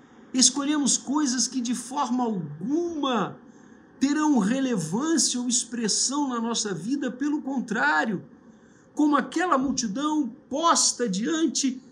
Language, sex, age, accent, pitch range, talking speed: Portuguese, male, 50-69, Brazilian, 185-270 Hz, 100 wpm